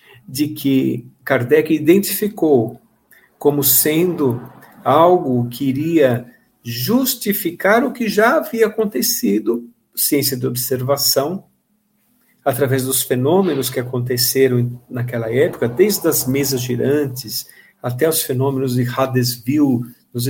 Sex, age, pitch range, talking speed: male, 50-69, 125-165 Hz, 105 wpm